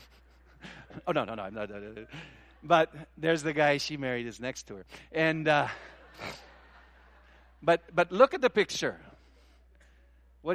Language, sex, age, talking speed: English, male, 60-79, 130 wpm